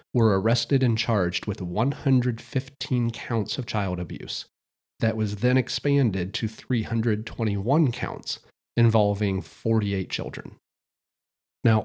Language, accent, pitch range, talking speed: English, American, 105-130 Hz, 105 wpm